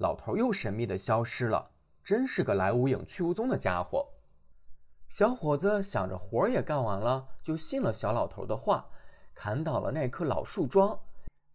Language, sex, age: Chinese, male, 20-39